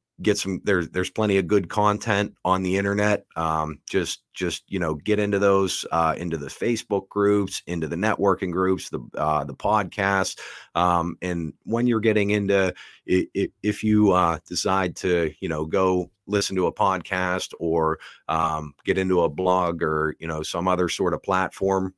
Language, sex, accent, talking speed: English, male, American, 180 wpm